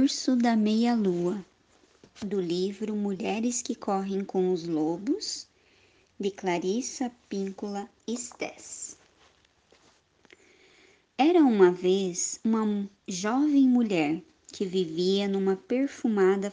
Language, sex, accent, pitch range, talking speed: Portuguese, male, Brazilian, 185-245 Hz, 90 wpm